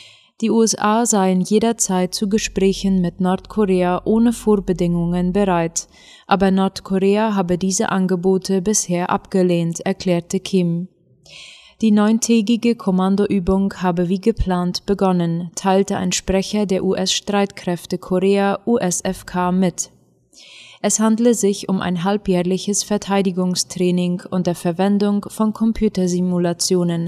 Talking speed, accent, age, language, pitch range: 100 wpm, German, 20-39, German, 180-205 Hz